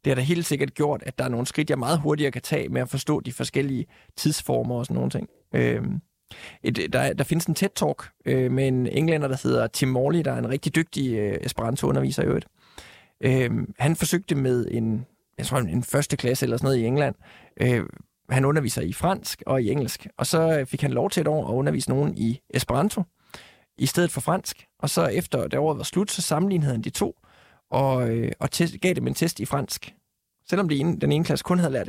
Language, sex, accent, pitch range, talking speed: Danish, male, native, 130-160 Hz, 225 wpm